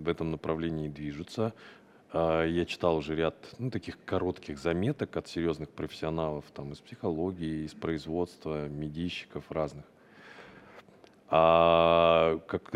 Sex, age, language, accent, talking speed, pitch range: male, 30-49, Russian, native, 115 wpm, 80-100 Hz